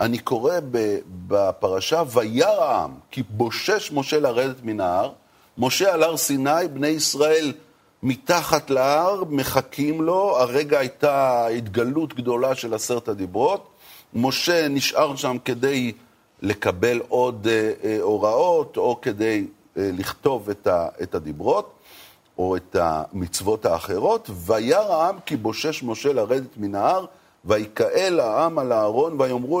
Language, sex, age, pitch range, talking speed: Hebrew, male, 40-59, 115-175 Hz, 115 wpm